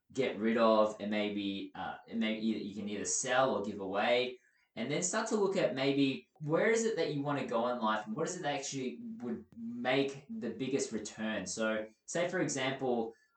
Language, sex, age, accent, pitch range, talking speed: English, male, 20-39, Australian, 105-130 Hz, 215 wpm